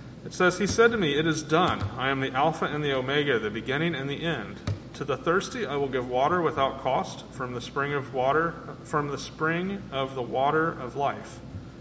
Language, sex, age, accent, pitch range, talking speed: English, male, 30-49, American, 125-155 Hz, 220 wpm